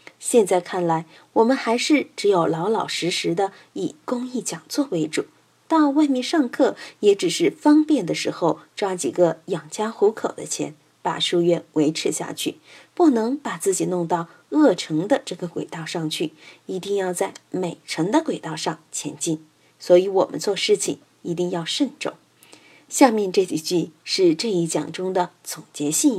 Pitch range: 175-290 Hz